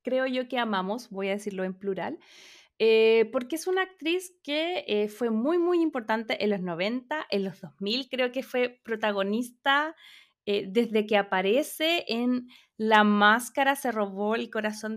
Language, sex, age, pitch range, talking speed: Spanish, female, 20-39, 210-290 Hz, 165 wpm